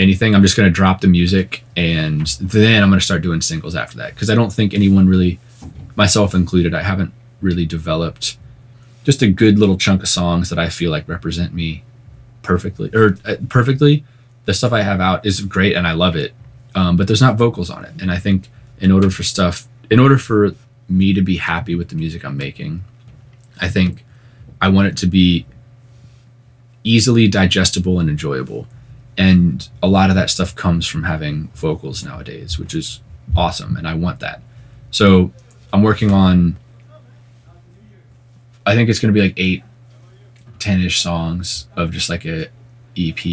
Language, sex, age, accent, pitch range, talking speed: English, male, 30-49, American, 90-120 Hz, 180 wpm